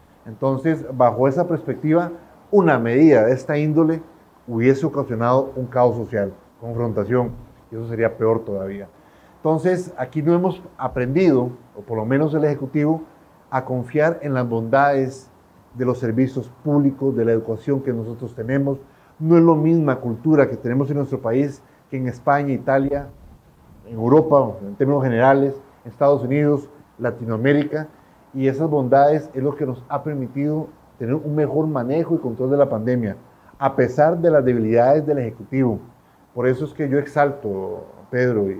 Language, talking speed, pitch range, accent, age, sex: Spanish, 155 wpm, 120-150 Hz, Mexican, 40-59, male